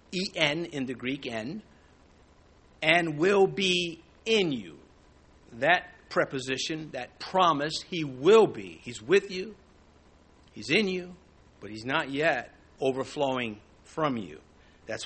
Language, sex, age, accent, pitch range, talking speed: English, male, 50-69, American, 135-190 Hz, 125 wpm